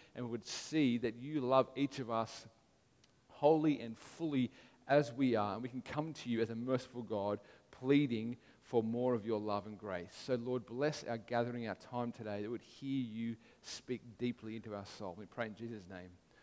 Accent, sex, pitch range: Australian, male, 120-145 Hz